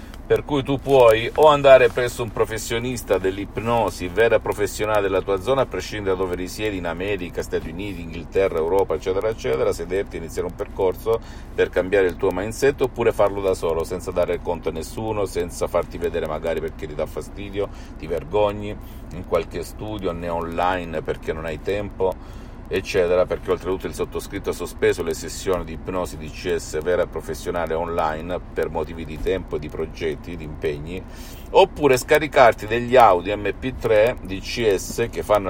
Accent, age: native, 50-69